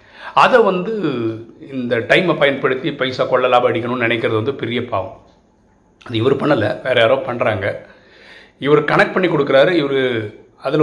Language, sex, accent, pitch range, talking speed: Tamil, male, native, 110-135 Hz, 140 wpm